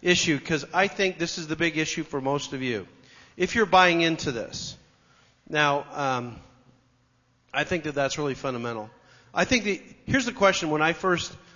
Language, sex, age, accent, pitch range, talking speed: English, male, 40-59, American, 120-155 Hz, 180 wpm